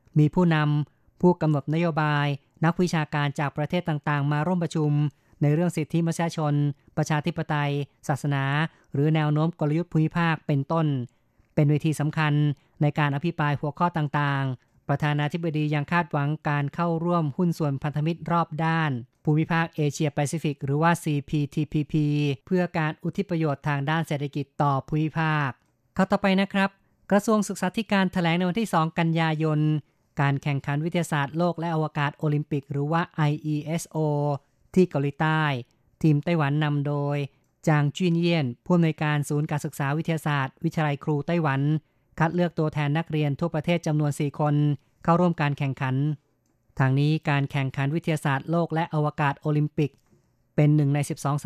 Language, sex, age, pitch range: Thai, female, 20-39, 145-165 Hz